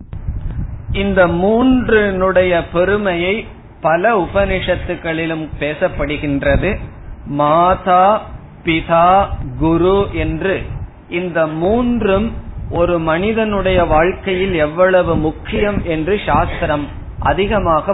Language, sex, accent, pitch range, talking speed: Tamil, male, native, 155-195 Hz, 65 wpm